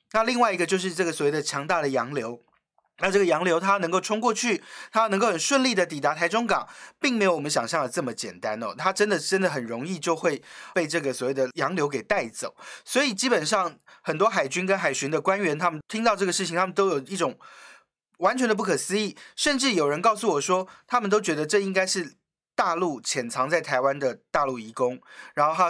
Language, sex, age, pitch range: Chinese, male, 30-49, 150-205 Hz